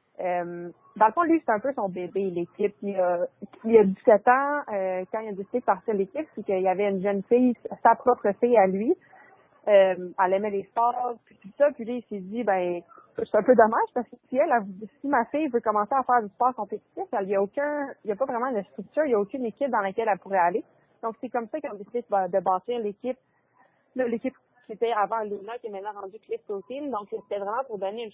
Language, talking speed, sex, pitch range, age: French, 250 wpm, female, 195-245 Hz, 20-39